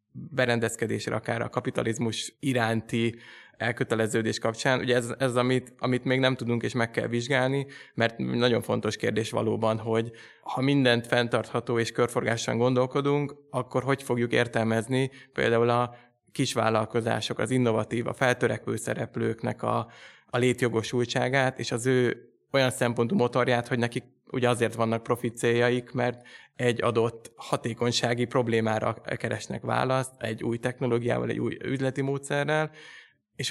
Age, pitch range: 20-39, 115-130 Hz